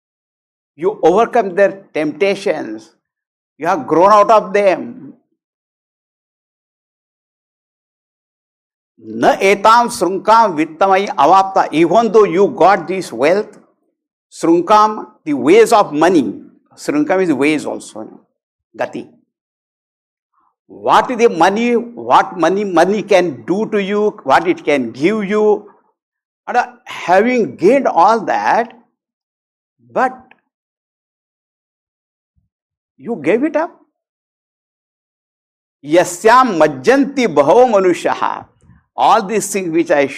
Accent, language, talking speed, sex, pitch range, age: Indian, English, 85 wpm, male, 170-245 Hz, 60-79